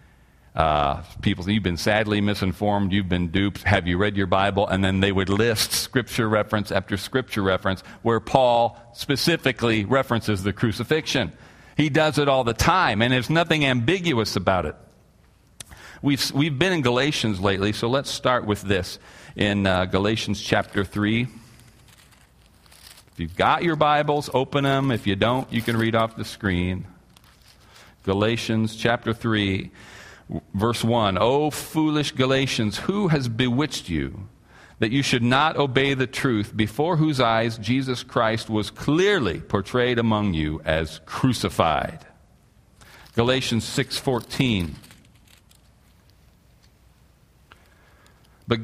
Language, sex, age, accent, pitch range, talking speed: English, male, 40-59, American, 100-130 Hz, 135 wpm